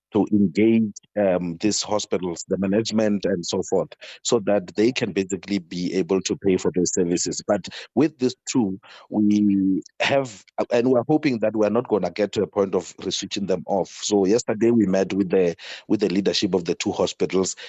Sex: male